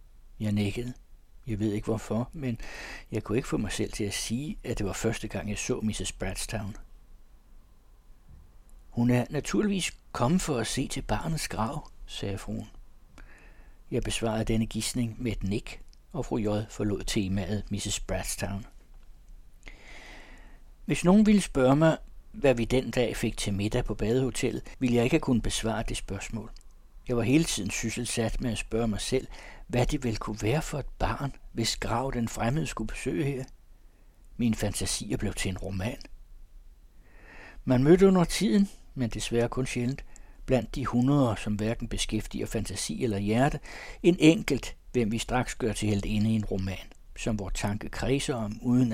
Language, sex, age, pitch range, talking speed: Danish, male, 60-79, 100-125 Hz, 170 wpm